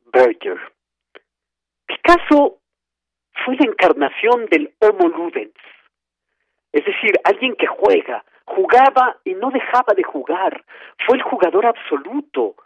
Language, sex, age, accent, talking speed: Spanish, male, 50-69, Mexican, 110 wpm